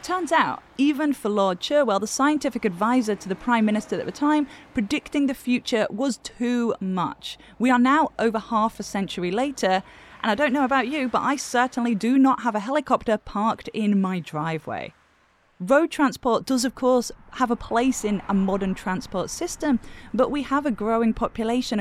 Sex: female